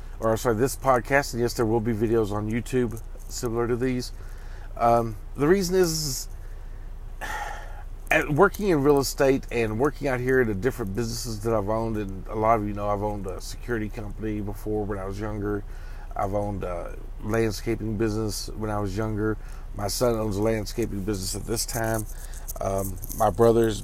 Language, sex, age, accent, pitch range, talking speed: English, male, 40-59, American, 100-120 Hz, 180 wpm